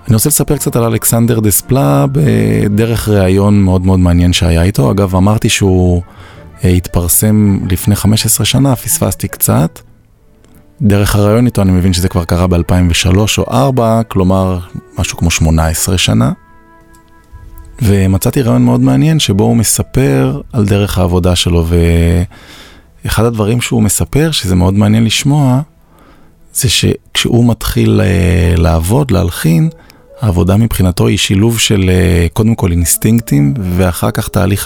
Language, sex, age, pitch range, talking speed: Hebrew, male, 20-39, 90-115 Hz, 130 wpm